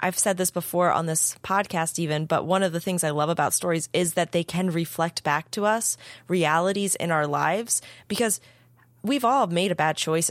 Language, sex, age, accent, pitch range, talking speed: English, female, 20-39, American, 160-195 Hz, 210 wpm